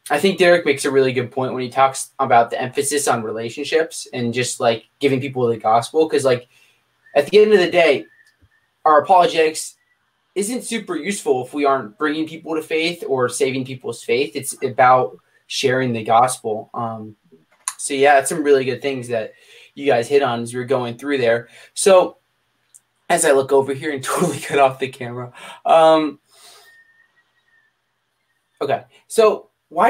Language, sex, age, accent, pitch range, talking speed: English, male, 20-39, American, 130-190 Hz, 175 wpm